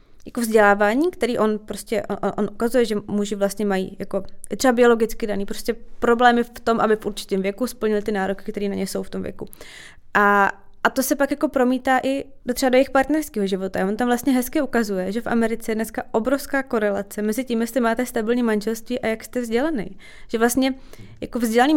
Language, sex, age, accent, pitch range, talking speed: Czech, female, 20-39, native, 205-240 Hz, 205 wpm